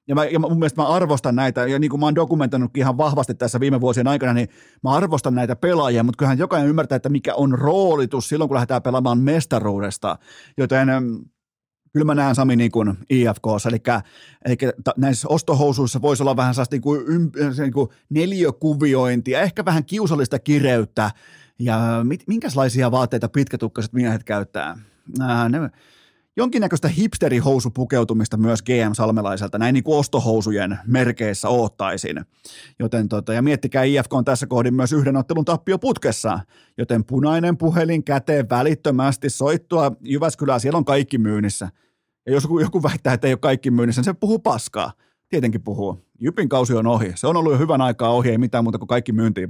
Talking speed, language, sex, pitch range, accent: 160 wpm, Finnish, male, 115-150 Hz, native